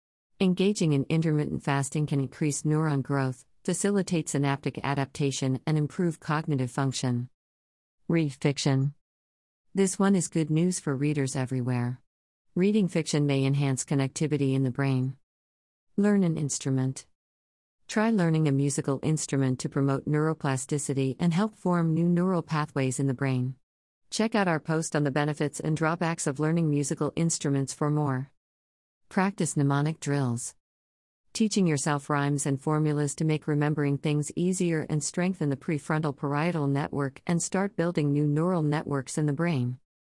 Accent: American